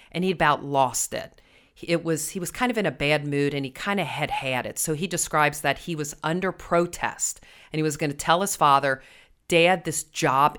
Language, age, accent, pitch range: English, 40-59, American, 145-185 Hz